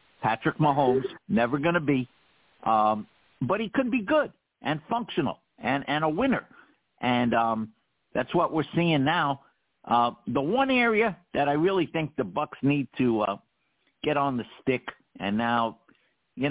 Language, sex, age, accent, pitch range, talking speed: English, male, 60-79, American, 115-155 Hz, 165 wpm